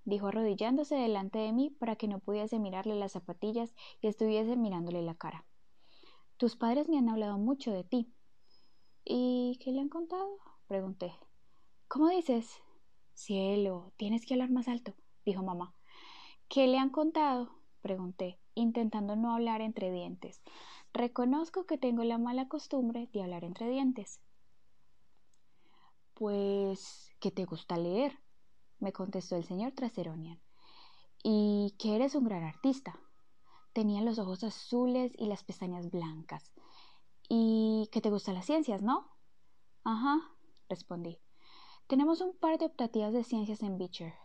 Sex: female